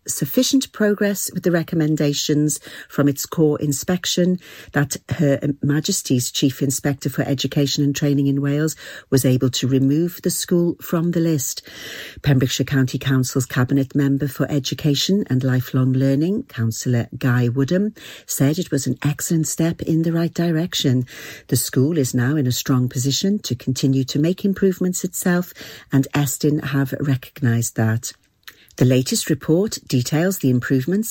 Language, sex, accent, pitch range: English, female, British, 135-175 Hz